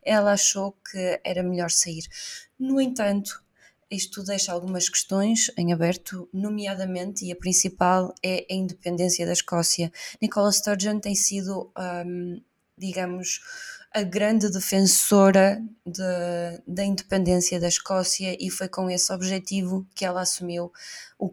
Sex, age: female, 20-39